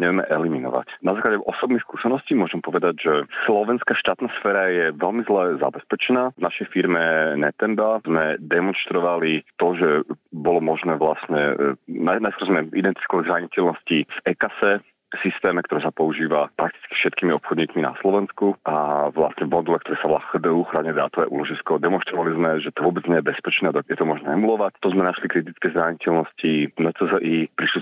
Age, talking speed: 40-59, 155 wpm